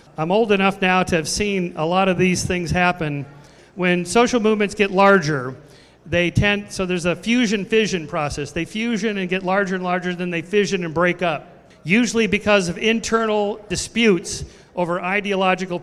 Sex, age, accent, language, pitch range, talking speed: male, 50-69, American, English, 175-225 Hz, 170 wpm